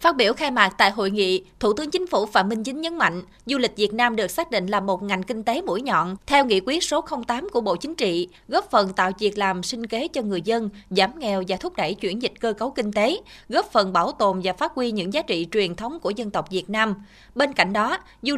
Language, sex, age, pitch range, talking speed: Vietnamese, female, 20-39, 200-265 Hz, 265 wpm